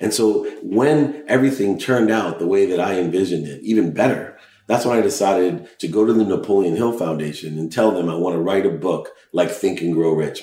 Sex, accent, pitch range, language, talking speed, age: male, American, 85-110 Hz, English, 225 wpm, 40-59